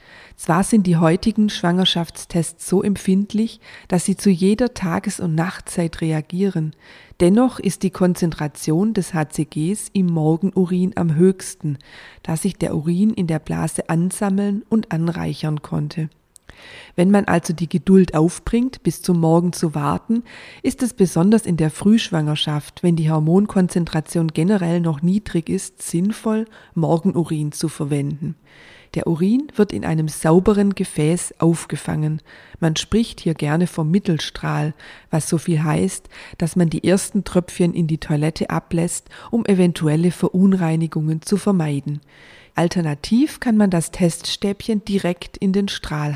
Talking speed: 135 wpm